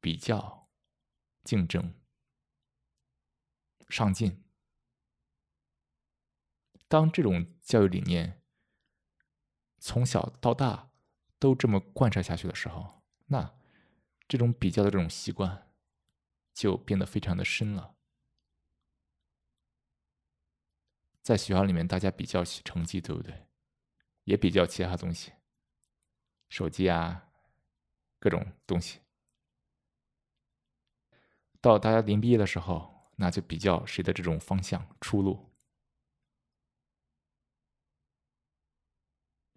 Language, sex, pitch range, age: Chinese, male, 70-100 Hz, 20-39